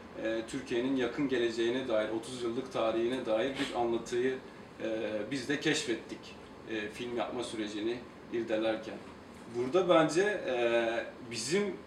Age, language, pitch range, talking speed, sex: 40-59, Turkish, 120-165 Hz, 100 wpm, male